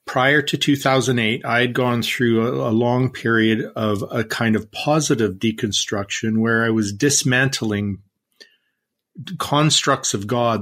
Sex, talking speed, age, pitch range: male, 130 wpm, 50-69, 110-130 Hz